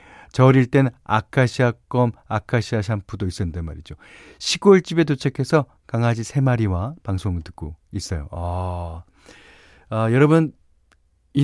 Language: Korean